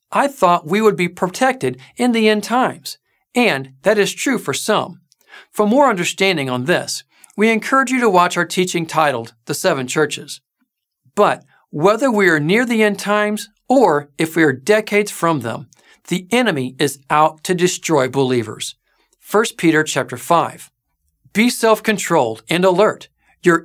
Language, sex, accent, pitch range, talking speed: English, male, American, 145-210 Hz, 160 wpm